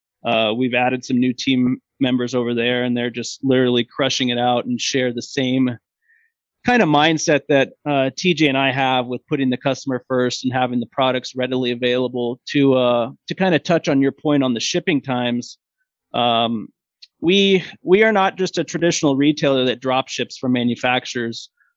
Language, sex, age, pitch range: English, male, 30-49, 125-150 Hz